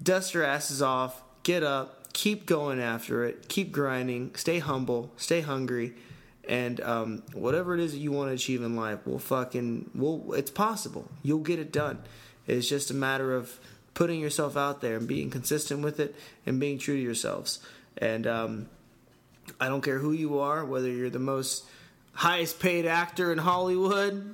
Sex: male